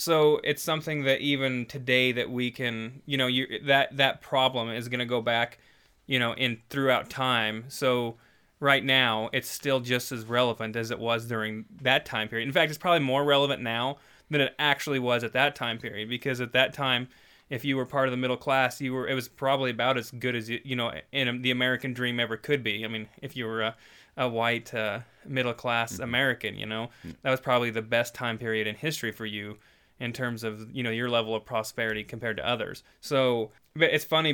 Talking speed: 220 wpm